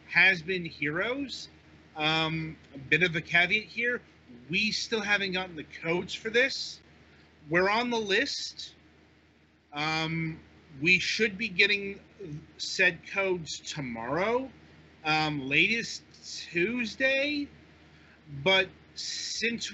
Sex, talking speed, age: male, 100 wpm, 30-49